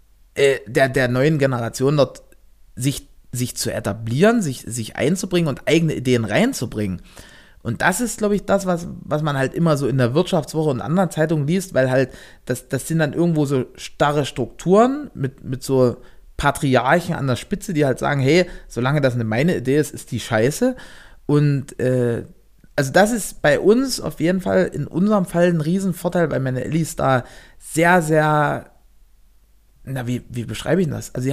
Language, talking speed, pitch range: German, 180 wpm, 125-170 Hz